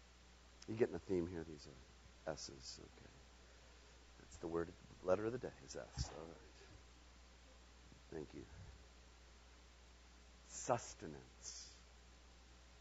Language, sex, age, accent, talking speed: English, male, 50-69, American, 105 wpm